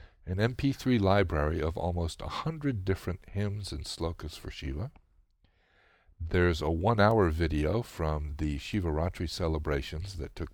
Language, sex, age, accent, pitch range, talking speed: English, male, 50-69, American, 75-95 Hz, 130 wpm